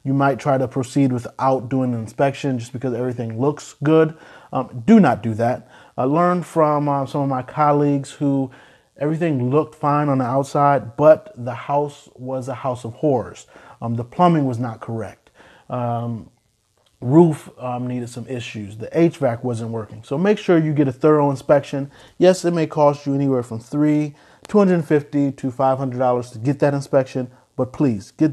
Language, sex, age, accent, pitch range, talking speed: English, male, 30-49, American, 125-145 Hz, 180 wpm